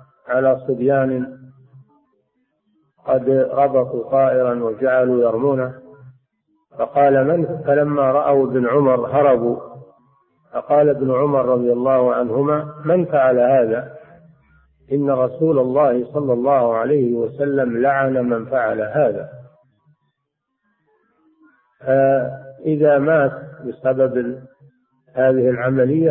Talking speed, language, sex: 90 wpm, Arabic, male